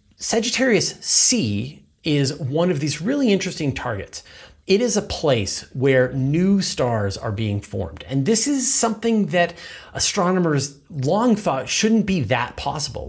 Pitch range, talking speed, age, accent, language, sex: 115-160 Hz, 140 wpm, 30-49, American, English, male